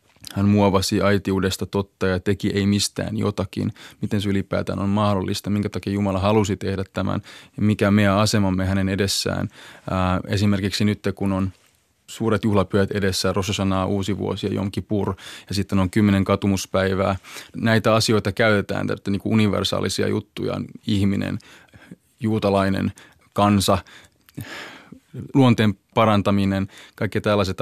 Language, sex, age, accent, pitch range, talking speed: Finnish, male, 20-39, native, 95-105 Hz, 125 wpm